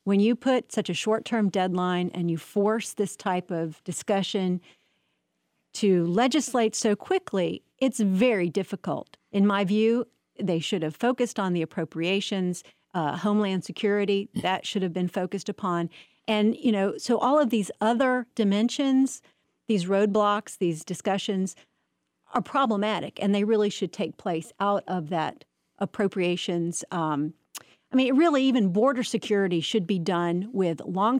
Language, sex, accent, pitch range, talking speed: English, female, American, 180-225 Hz, 150 wpm